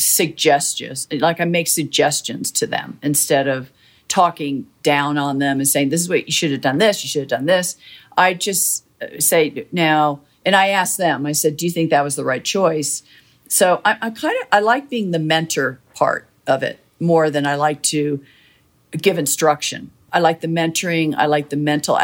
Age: 50-69